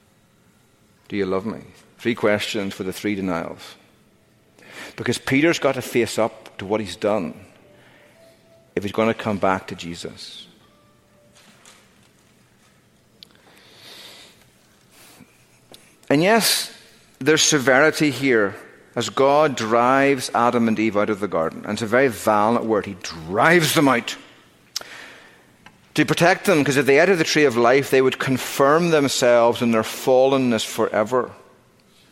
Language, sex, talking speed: English, male, 135 wpm